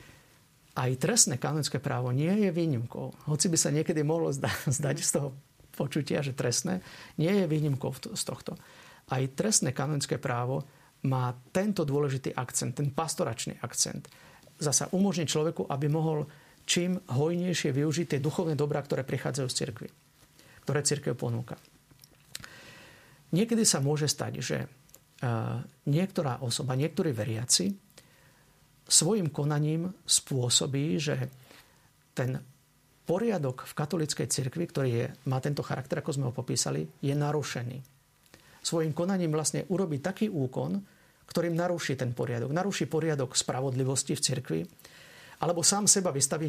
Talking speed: 130 wpm